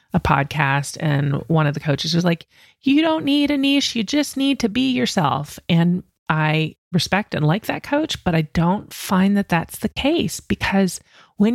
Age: 30-49